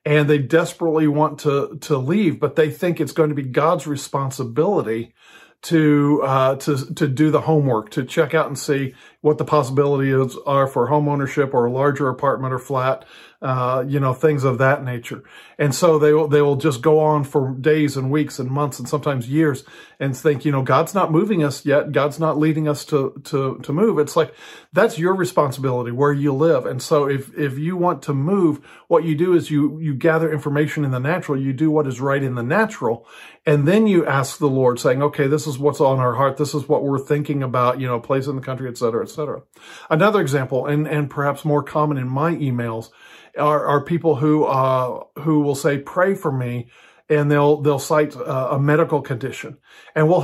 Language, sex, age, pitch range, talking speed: English, male, 40-59, 135-155 Hz, 215 wpm